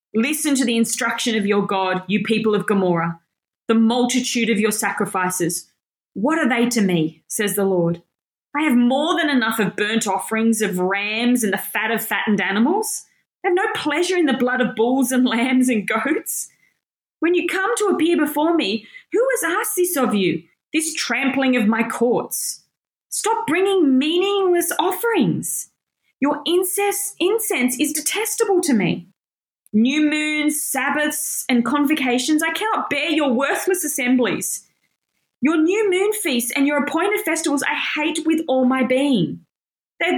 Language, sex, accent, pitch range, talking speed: English, female, Australian, 225-320 Hz, 160 wpm